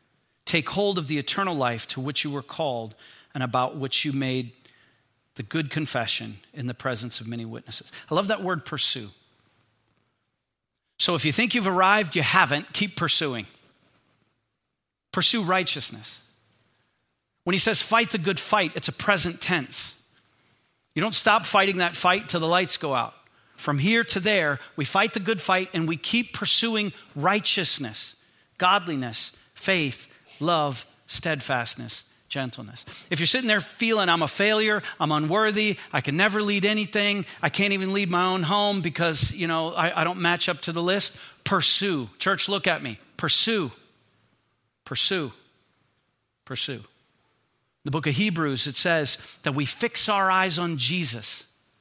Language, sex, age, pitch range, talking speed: English, male, 40-59, 130-195 Hz, 160 wpm